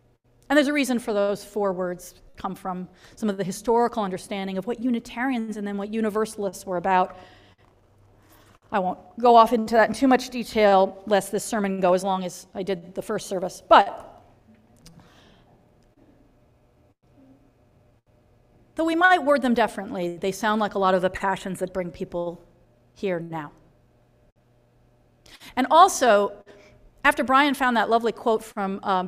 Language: English